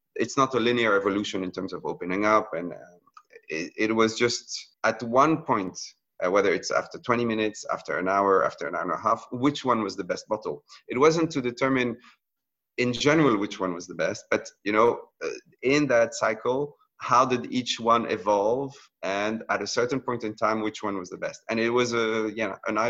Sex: male